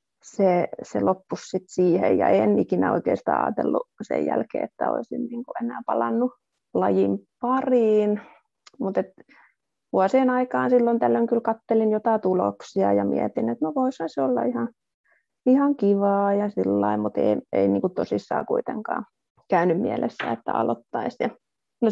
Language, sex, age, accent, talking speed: Finnish, female, 30-49, native, 140 wpm